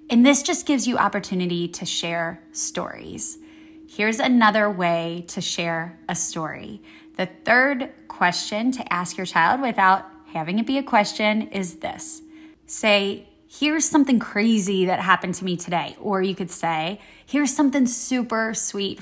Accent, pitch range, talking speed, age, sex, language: American, 180-255 Hz, 150 wpm, 20-39, female, English